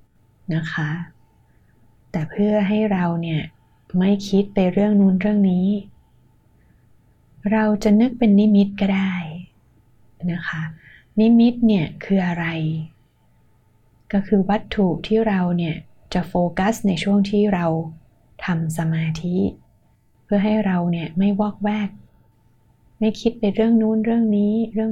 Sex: female